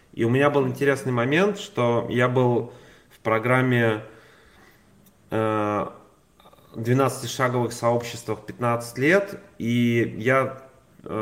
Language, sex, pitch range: Russian, male, 110-125 Hz